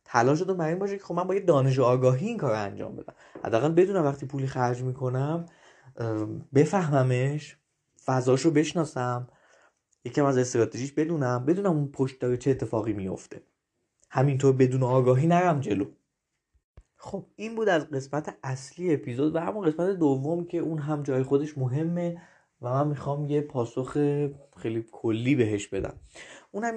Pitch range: 125-170 Hz